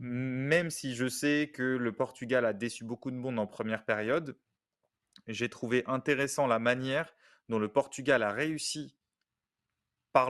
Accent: French